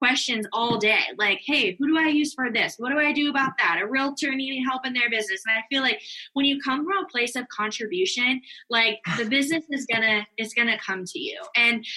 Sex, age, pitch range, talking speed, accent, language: female, 10-29, 210-260 Hz, 235 wpm, American, English